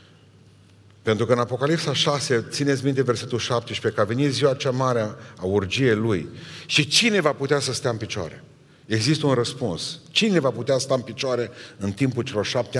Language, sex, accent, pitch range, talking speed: Romanian, male, native, 110-145 Hz, 190 wpm